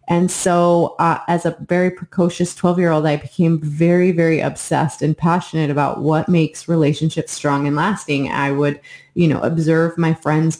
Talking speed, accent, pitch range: 165 wpm, American, 155-180 Hz